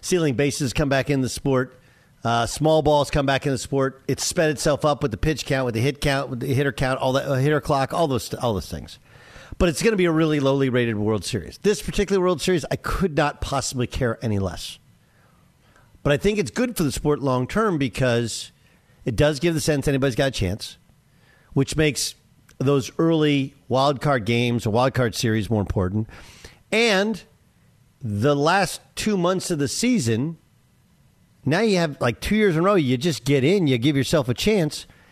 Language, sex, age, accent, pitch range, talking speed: English, male, 50-69, American, 130-175 Hz, 210 wpm